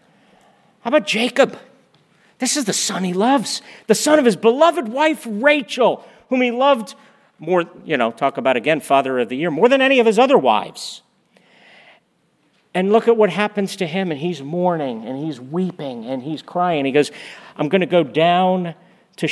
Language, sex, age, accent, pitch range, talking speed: English, male, 50-69, American, 165-220 Hz, 185 wpm